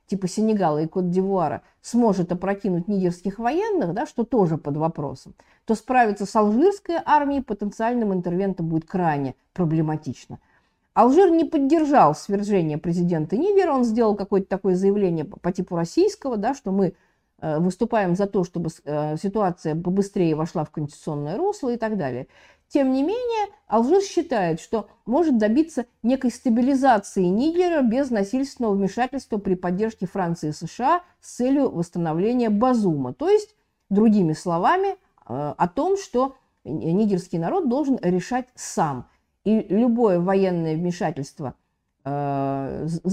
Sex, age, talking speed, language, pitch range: female, 50-69, 130 wpm, Russian, 175-255 Hz